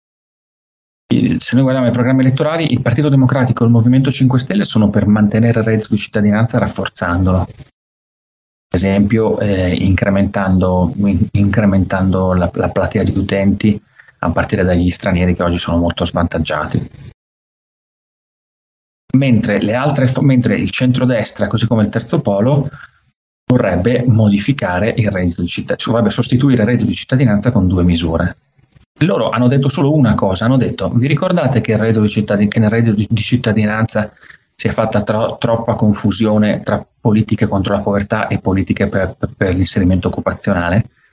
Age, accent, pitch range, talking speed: 30-49, native, 95-125 Hz, 150 wpm